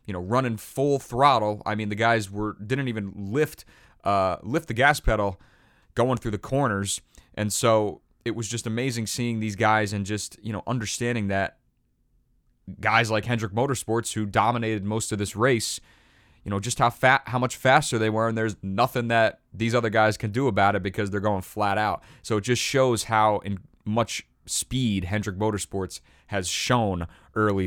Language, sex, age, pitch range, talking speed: English, male, 30-49, 100-120 Hz, 185 wpm